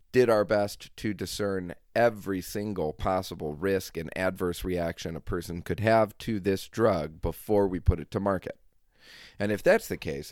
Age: 40-59